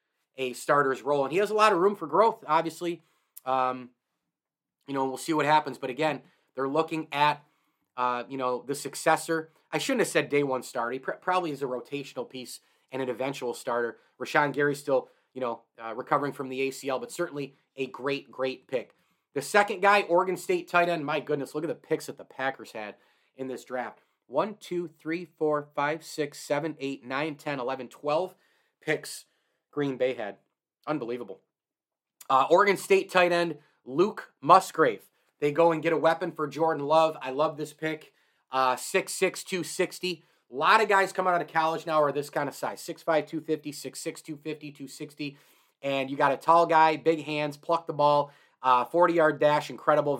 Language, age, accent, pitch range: English, 30-49, American, 135-165 Hz